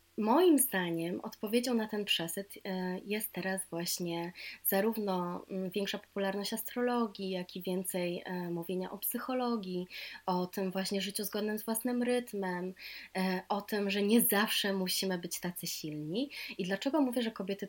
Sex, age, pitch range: female, 20-39, 180-215 Hz